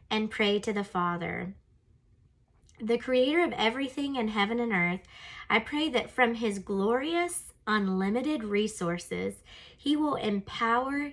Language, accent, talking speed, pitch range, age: English, American, 130 wpm, 185-245 Hz, 30-49